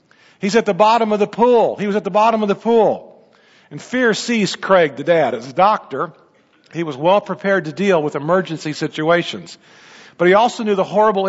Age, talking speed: 50-69, 205 wpm